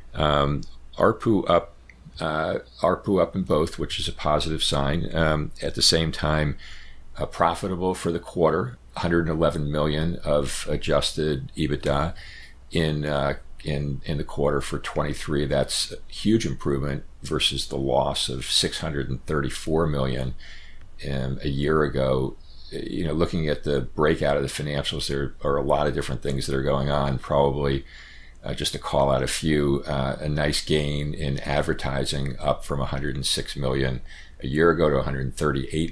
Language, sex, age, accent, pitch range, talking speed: English, male, 50-69, American, 65-75 Hz, 155 wpm